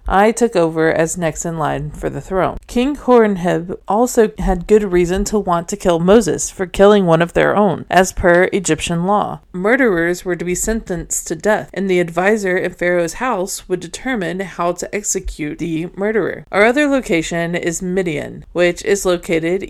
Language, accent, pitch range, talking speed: English, American, 175-210 Hz, 180 wpm